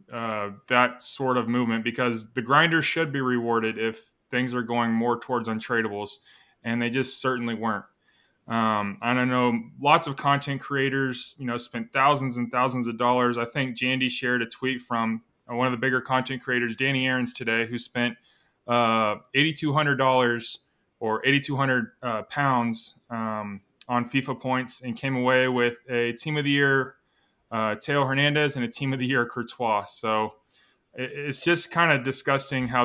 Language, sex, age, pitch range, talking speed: English, male, 20-39, 120-140 Hz, 170 wpm